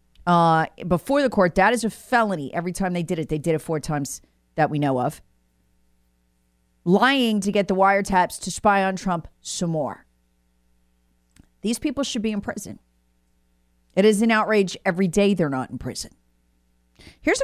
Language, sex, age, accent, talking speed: English, female, 40-59, American, 170 wpm